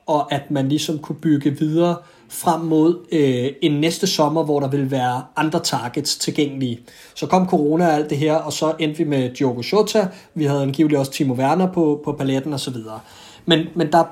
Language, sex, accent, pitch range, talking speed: Danish, male, native, 140-170 Hz, 200 wpm